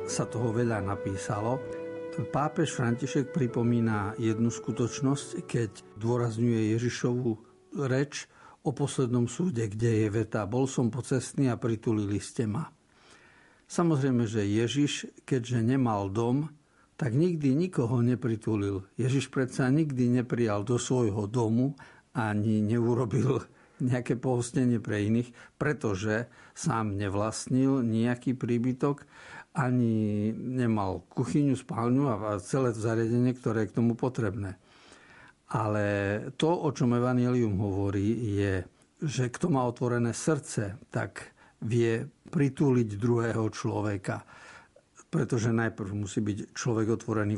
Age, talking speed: 60-79, 115 wpm